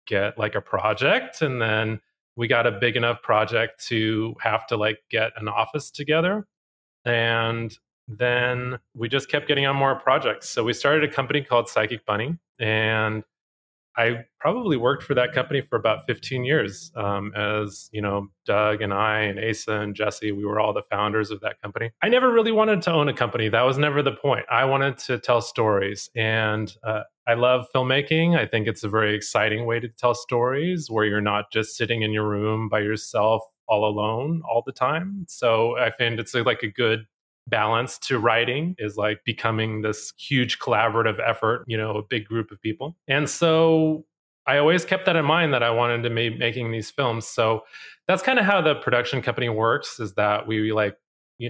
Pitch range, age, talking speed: 105-125 Hz, 30-49, 200 wpm